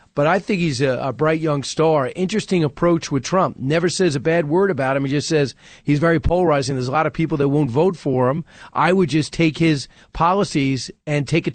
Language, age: English, 40-59